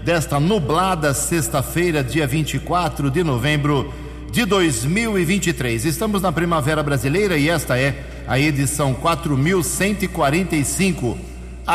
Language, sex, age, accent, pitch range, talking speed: English, male, 60-79, Brazilian, 125-160 Hz, 95 wpm